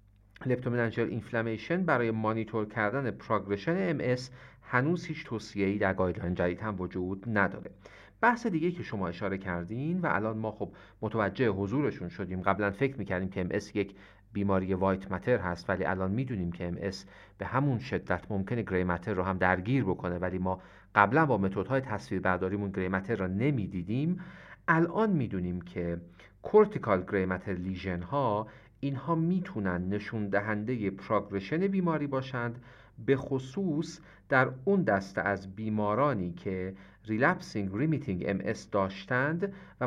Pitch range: 95-125 Hz